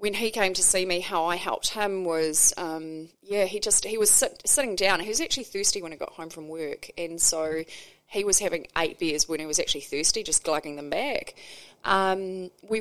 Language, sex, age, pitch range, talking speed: English, female, 20-39, 170-220 Hz, 225 wpm